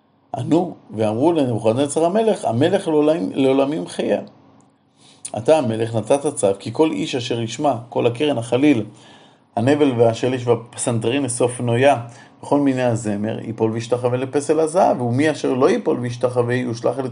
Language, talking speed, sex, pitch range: Hebrew, 135 wpm, male, 110-135 Hz